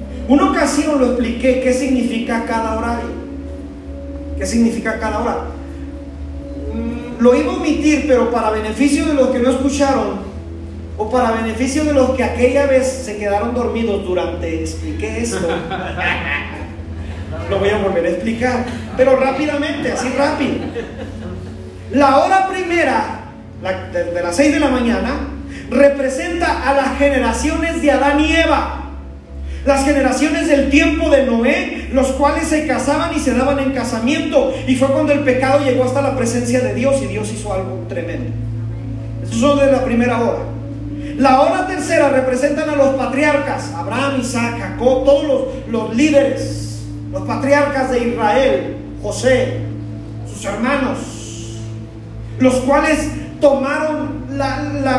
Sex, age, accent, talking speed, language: male, 40-59, Mexican, 140 wpm, Spanish